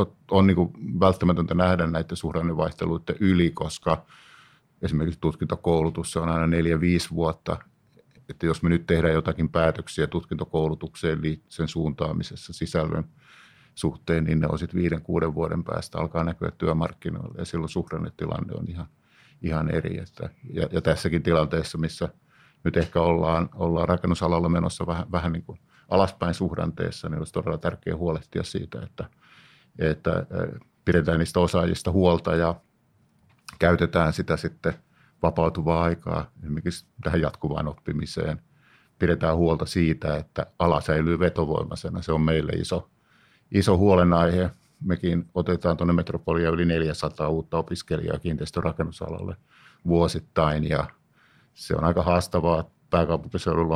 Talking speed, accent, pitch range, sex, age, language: 120 wpm, native, 80-90 Hz, male, 50-69, Finnish